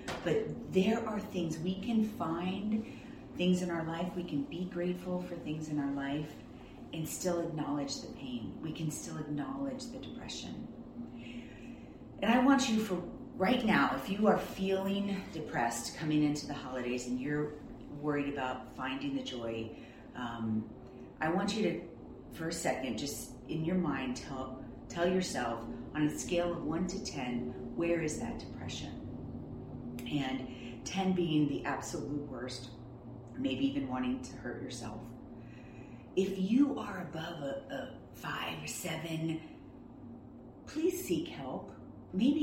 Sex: female